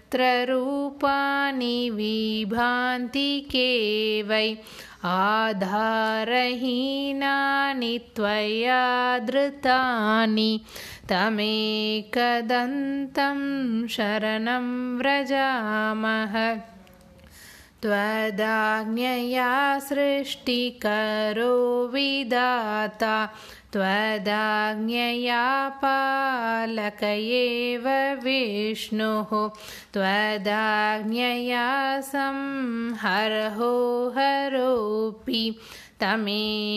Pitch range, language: 215-255 Hz, Tamil